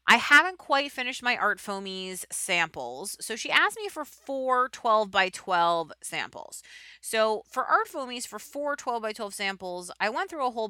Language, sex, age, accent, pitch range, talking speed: English, female, 30-49, American, 175-240 Hz, 185 wpm